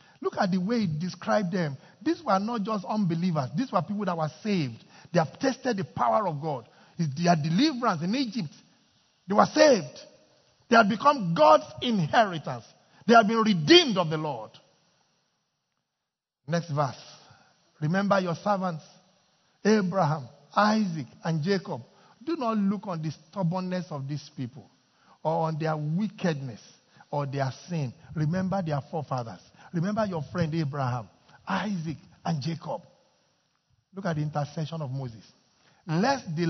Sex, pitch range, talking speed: male, 155-200 Hz, 145 wpm